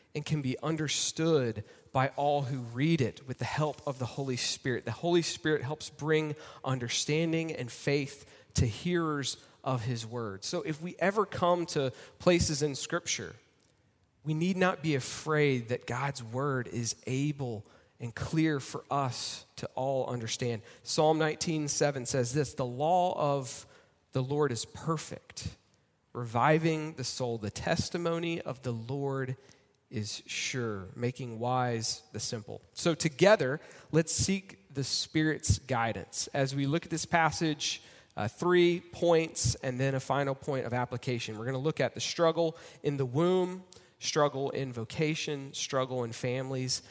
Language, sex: English, male